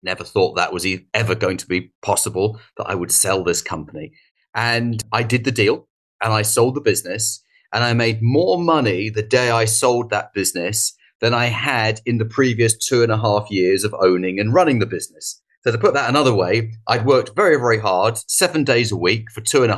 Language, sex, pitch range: English, male, 110-135 Hz